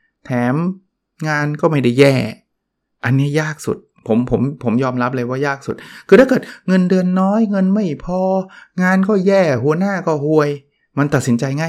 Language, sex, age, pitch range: Thai, male, 20-39, 120-160 Hz